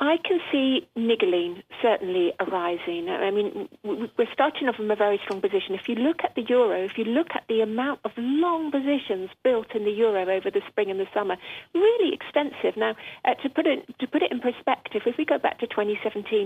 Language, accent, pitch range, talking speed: English, British, 205-285 Hz, 215 wpm